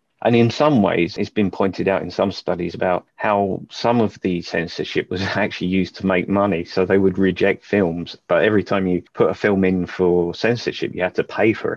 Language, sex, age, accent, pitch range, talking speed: English, male, 30-49, British, 90-105 Hz, 220 wpm